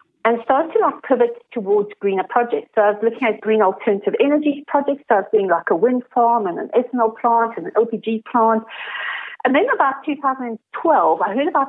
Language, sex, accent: English, female, British